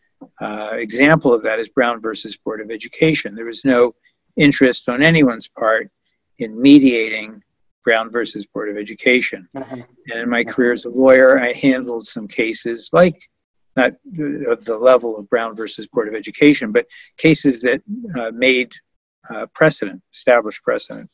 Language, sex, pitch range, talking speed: English, male, 115-150 Hz, 155 wpm